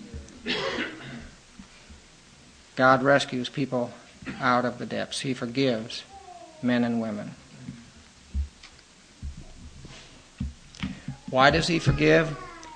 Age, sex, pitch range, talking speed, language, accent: 60-79, male, 115-135 Hz, 75 wpm, English, American